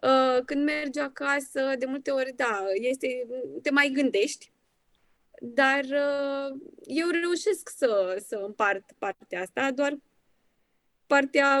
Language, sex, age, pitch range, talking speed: Romanian, female, 20-39, 230-285 Hz, 110 wpm